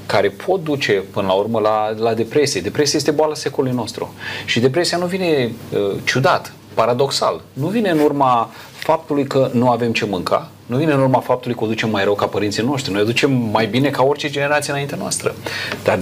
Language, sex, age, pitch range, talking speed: Romanian, male, 30-49, 105-135 Hz, 200 wpm